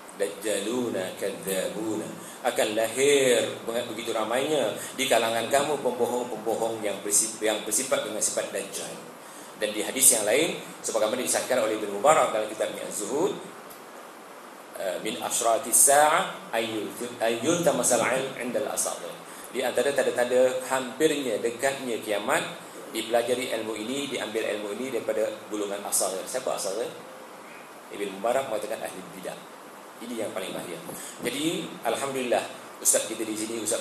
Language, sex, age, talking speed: Malay, male, 30-49, 135 wpm